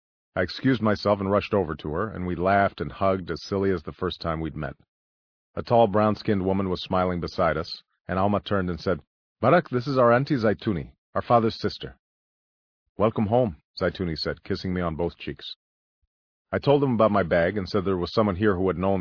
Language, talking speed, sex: English, 210 wpm, male